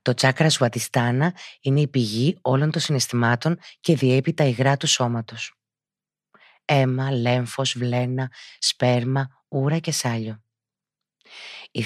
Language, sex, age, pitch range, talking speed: Greek, female, 30-49, 115-140 Hz, 115 wpm